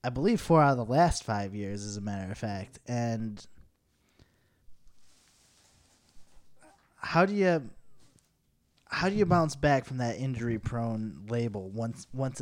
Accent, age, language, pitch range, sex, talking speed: American, 20-39, English, 100-130 Hz, male, 140 wpm